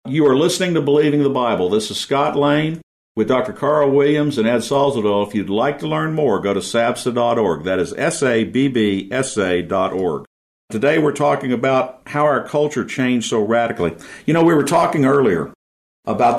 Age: 50-69